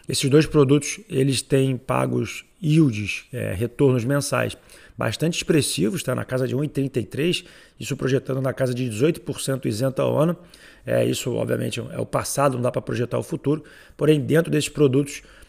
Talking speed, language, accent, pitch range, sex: 165 wpm, Portuguese, Brazilian, 135-160 Hz, male